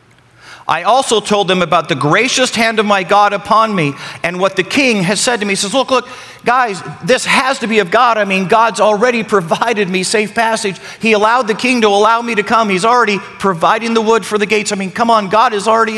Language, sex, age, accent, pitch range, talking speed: English, male, 50-69, American, 165-230 Hz, 240 wpm